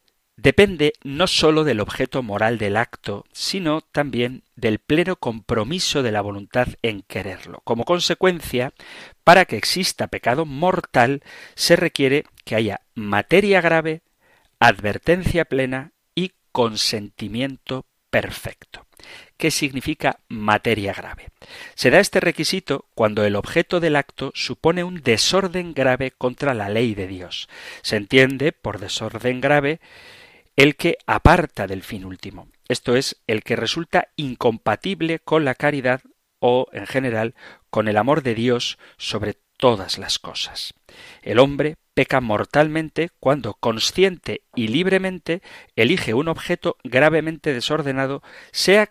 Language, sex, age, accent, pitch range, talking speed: Spanish, male, 40-59, Spanish, 115-160 Hz, 130 wpm